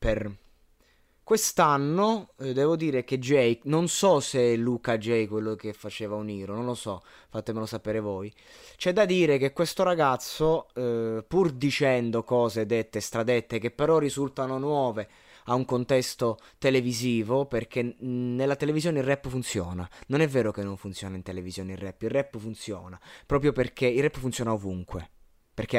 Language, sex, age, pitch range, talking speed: Italian, male, 20-39, 105-130 Hz, 165 wpm